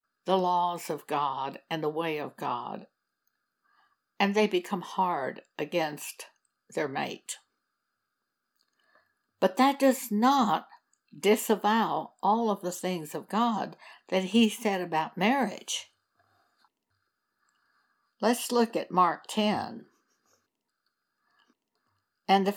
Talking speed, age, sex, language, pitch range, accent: 105 wpm, 60-79, female, English, 165-225 Hz, American